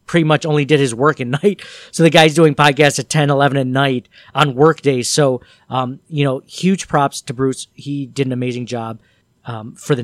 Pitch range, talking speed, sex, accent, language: 130-155 Hz, 215 wpm, male, American, English